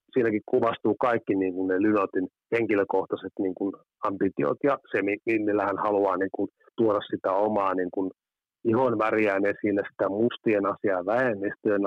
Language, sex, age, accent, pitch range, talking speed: Finnish, male, 30-49, native, 95-115 Hz, 150 wpm